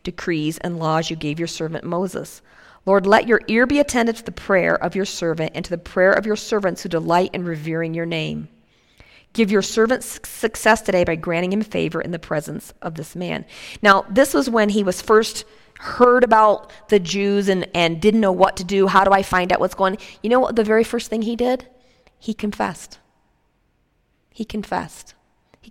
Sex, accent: female, American